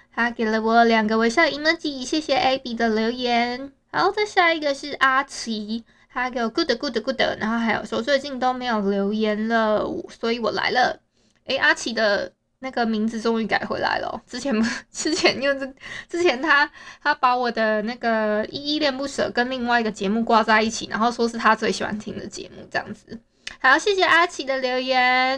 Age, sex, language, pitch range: 20-39, female, Chinese, 225-290 Hz